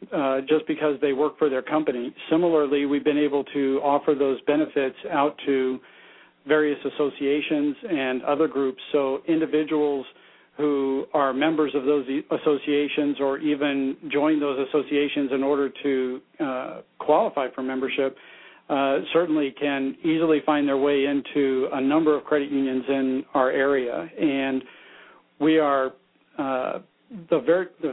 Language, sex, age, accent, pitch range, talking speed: English, male, 50-69, American, 130-150 Hz, 140 wpm